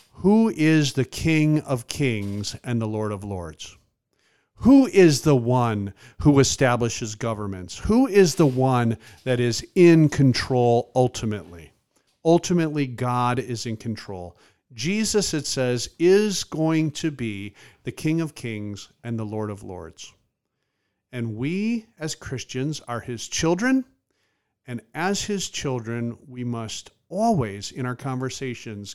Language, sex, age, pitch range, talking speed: English, male, 50-69, 110-145 Hz, 135 wpm